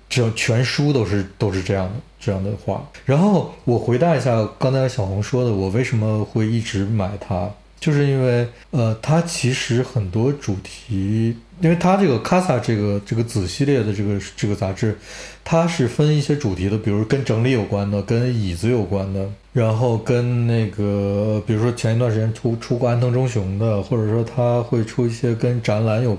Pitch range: 105-130 Hz